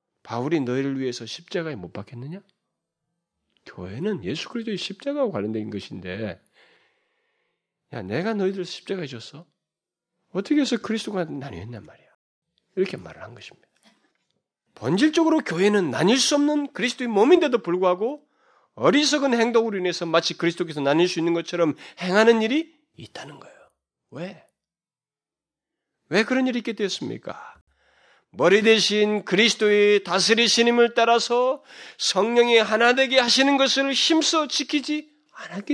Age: 40-59